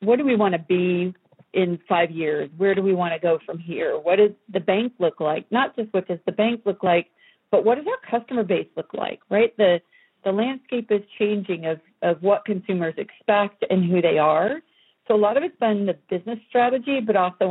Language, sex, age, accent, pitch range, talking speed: English, female, 50-69, American, 180-220 Hz, 225 wpm